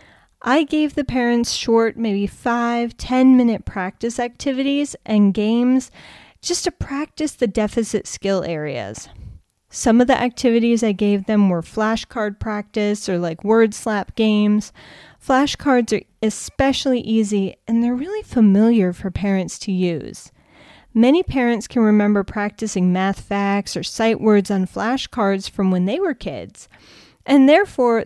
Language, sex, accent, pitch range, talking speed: English, female, American, 200-245 Hz, 140 wpm